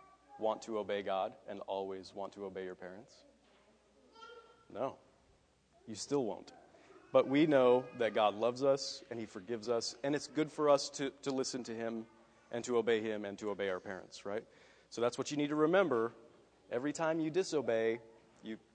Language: English